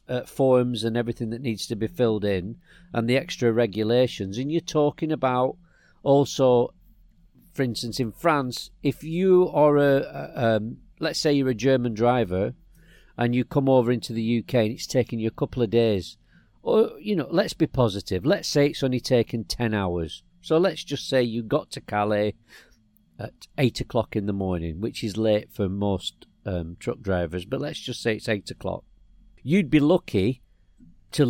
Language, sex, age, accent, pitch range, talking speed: English, male, 50-69, British, 110-140 Hz, 180 wpm